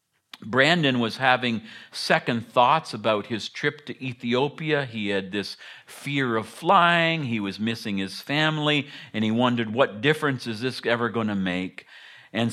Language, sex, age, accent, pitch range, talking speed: English, male, 50-69, American, 100-145 Hz, 160 wpm